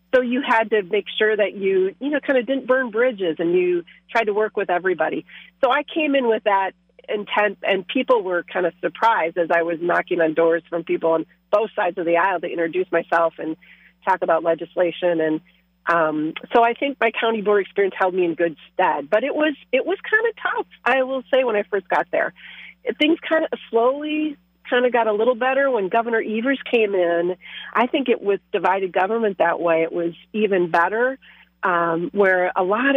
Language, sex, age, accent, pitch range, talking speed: English, female, 40-59, American, 175-230 Hz, 210 wpm